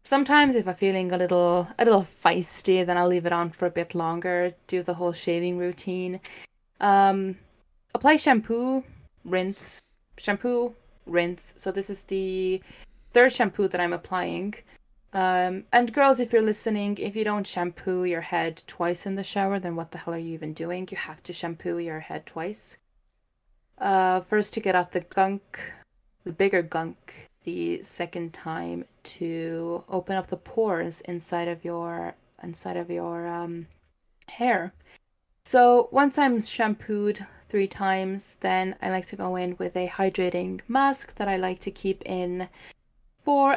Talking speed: 165 wpm